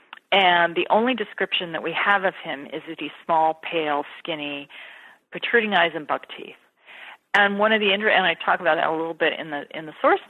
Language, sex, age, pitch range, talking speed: English, female, 40-59, 150-200 Hz, 220 wpm